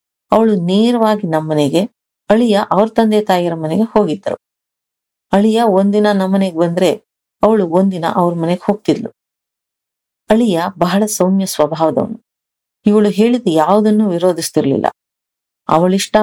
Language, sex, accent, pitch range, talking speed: Kannada, female, native, 165-205 Hz, 100 wpm